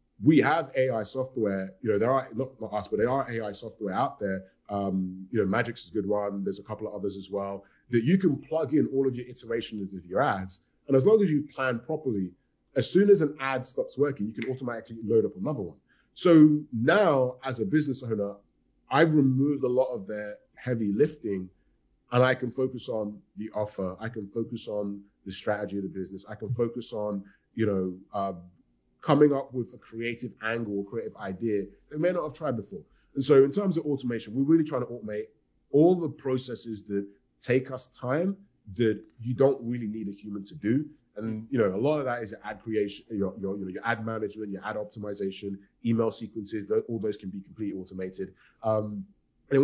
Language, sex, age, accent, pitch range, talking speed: English, male, 30-49, British, 100-130 Hz, 210 wpm